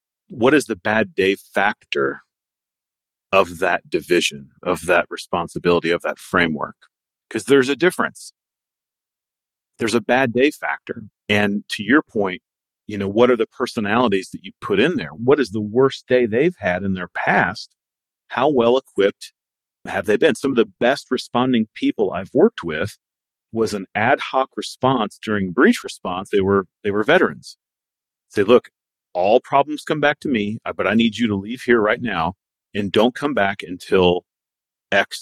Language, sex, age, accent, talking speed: English, male, 40-59, American, 170 wpm